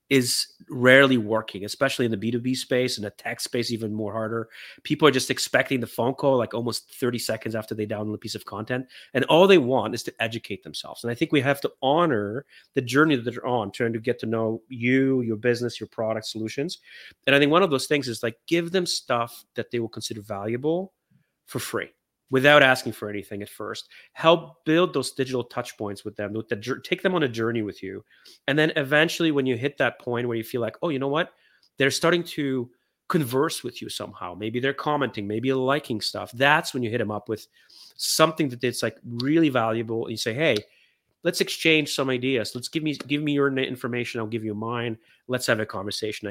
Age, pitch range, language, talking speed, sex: 30-49, 110-140 Hz, English, 220 wpm, male